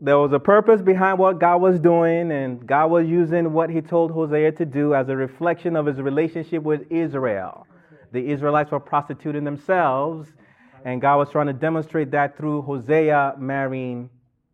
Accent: American